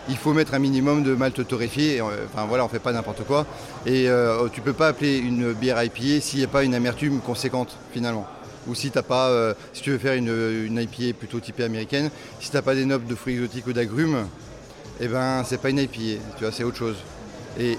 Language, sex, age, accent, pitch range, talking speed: French, male, 30-49, French, 120-145 Hz, 250 wpm